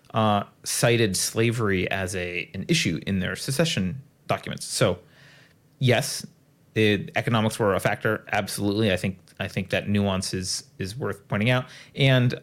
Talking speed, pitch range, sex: 150 wpm, 110-145 Hz, male